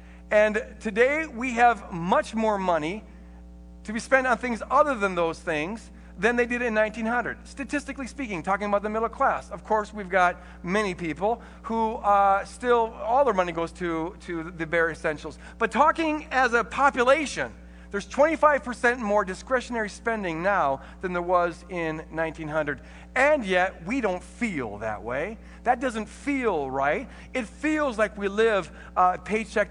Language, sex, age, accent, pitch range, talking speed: English, male, 50-69, American, 185-270 Hz, 160 wpm